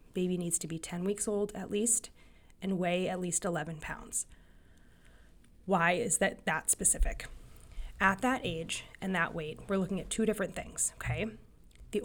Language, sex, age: English, female, 20-39